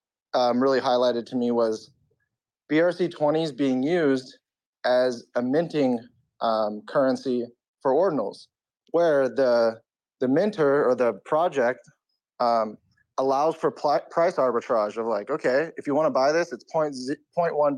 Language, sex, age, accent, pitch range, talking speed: English, male, 30-49, American, 130-170 Hz, 150 wpm